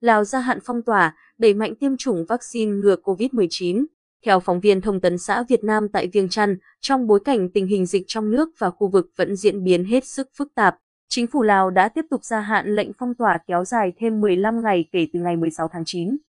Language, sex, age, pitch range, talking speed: Vietnamese, female, 20-39, 195-240 Hz, 230 wpm